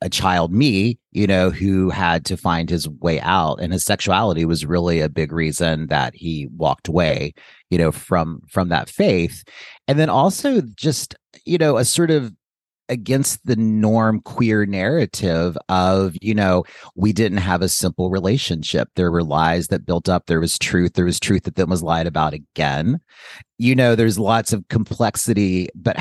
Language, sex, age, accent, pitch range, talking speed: English, male, 30-49, American, 85-110 Hz, 180 wpm